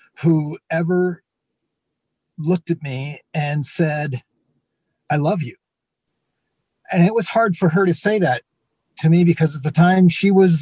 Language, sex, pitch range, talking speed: English, male, 130-165 Hz, 155 wpm